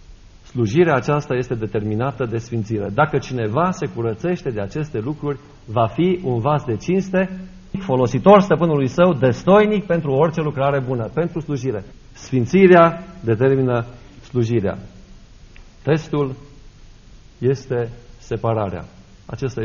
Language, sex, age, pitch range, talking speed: Romanian, male, 50-69, 115-170 Hz, 110 wpm